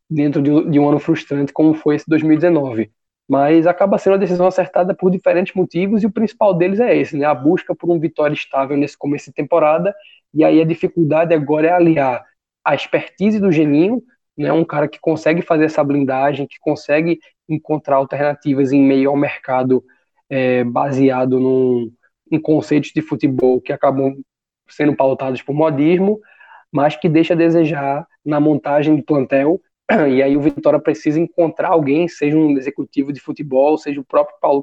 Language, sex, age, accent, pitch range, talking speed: Portuguese, male, 20-39, Brazilian, 140-165 Hz, 175 wpm